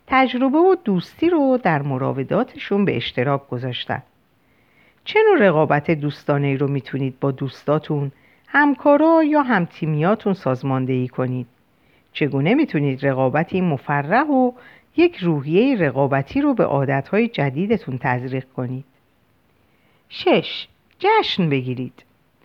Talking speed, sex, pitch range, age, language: 100 wpm, female, 135-230 Hz, 50-69, Persian